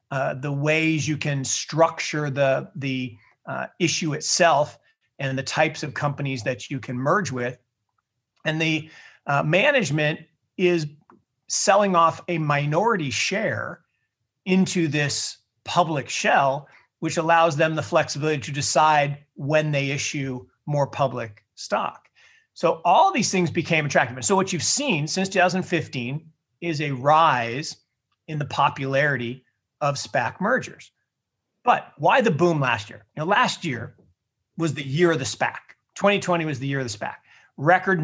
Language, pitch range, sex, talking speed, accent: English, 135-165 Hz, male, 150 wpm, American